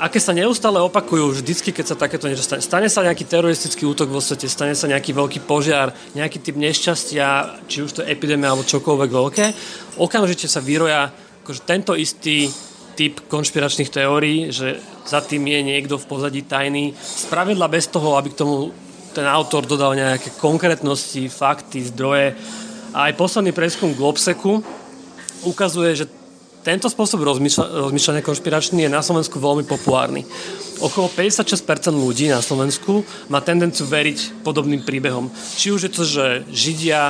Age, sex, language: 30-49, male, Slovak